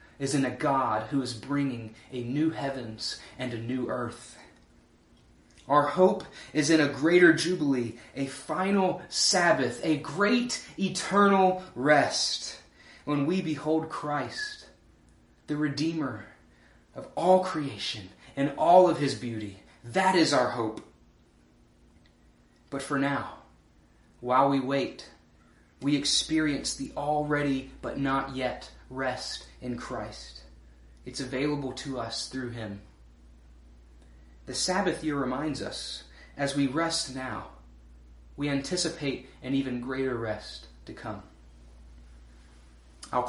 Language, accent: English, American